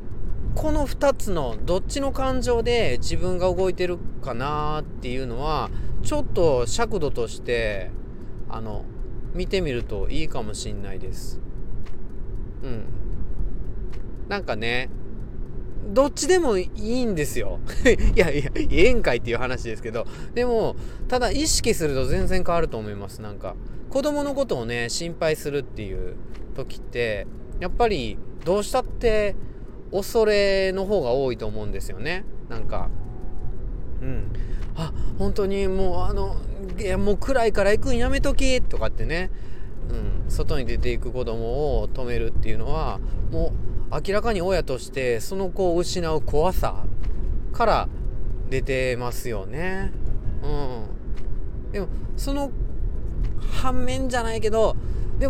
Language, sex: Japanese, male